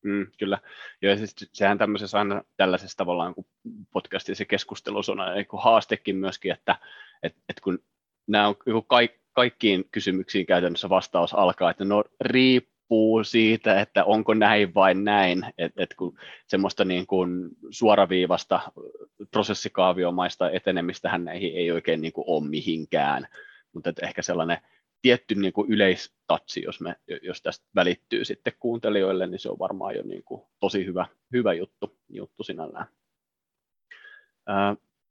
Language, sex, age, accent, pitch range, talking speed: Finnish, male, 20-39, native, 95-125 Hz, 135 wpm